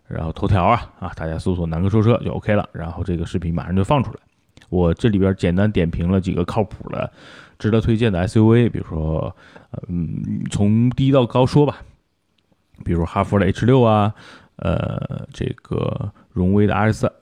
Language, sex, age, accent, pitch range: Chinese, male, 20-39, native, 90-110 Hz